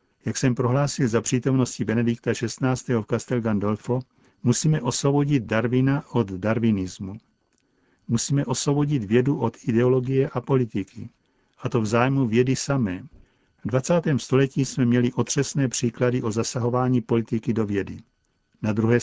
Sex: male